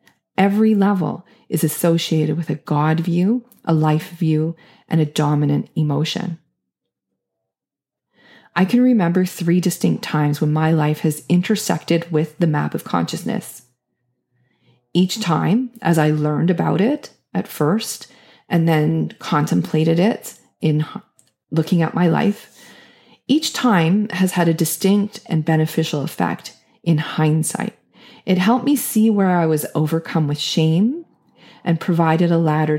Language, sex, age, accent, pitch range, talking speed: English, female, 30-49, American, 150-195 Hz, 135 wpm